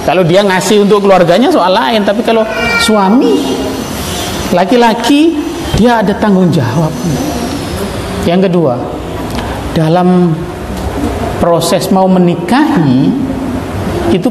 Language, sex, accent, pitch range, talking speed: Indonesian, male, native, 140-205 Hz, 90 wpm